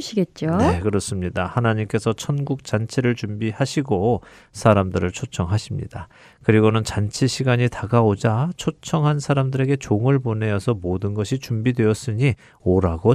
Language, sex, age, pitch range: Korean, male, 40-59, 100-130 Hz